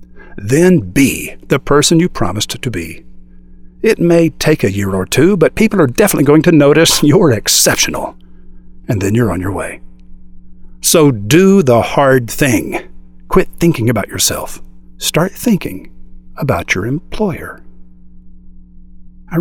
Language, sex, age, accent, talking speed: English, male, 50-69, American, 140 wpm